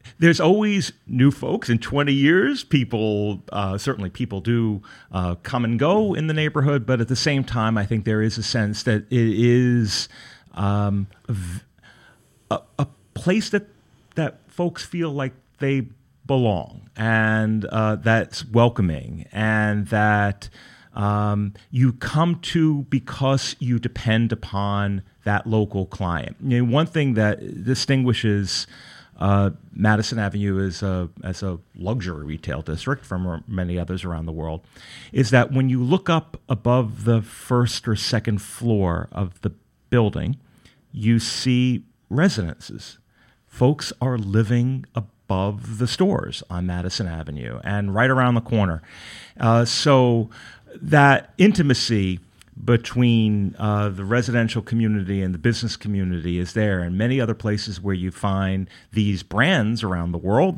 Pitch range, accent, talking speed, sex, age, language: 100-125 Hz, American, 140 wpm, male, 30-49, English